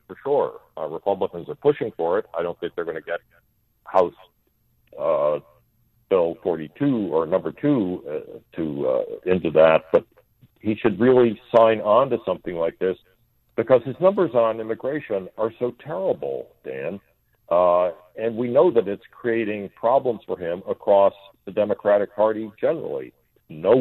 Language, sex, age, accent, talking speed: English, male, 60-79, American, 155 wpm